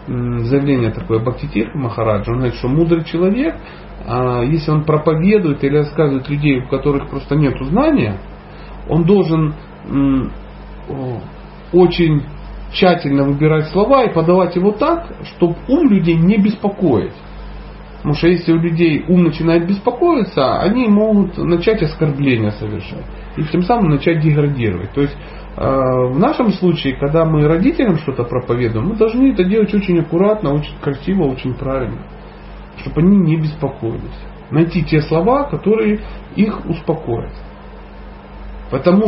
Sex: male